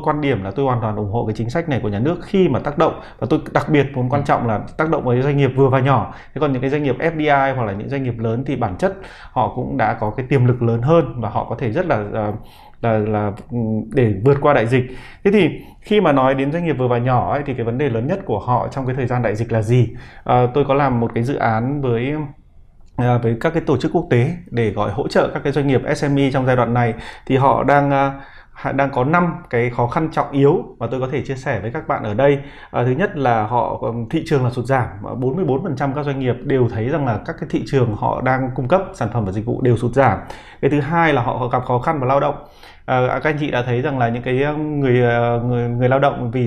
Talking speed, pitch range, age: 280 wpm, 120-145 Hz, 20-39